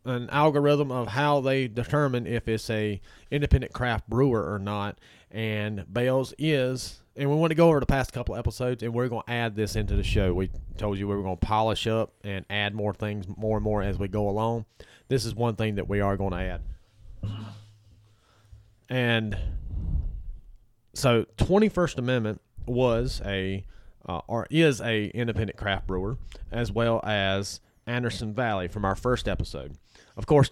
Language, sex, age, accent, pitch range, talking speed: English, male, 30-49, American, 100-125 Hz, 175 wpm